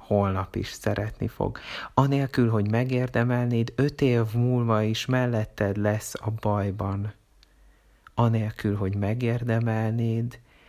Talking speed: 100 wpm